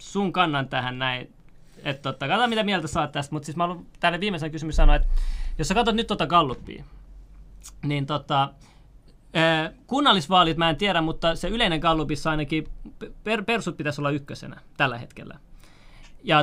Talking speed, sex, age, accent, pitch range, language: 155 wpm, male, 30-49, native, 150-190 Hz, Finnish